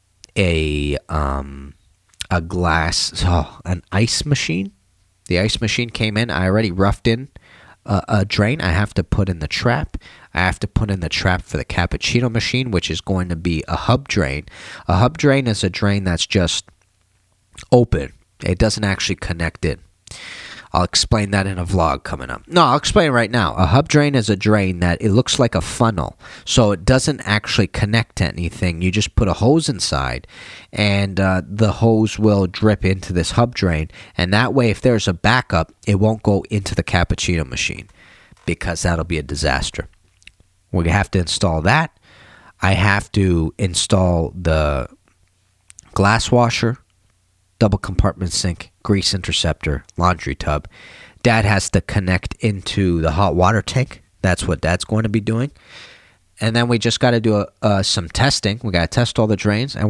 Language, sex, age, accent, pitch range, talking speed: English, male, 30-49, American, 90-110 Hz, 180 wpm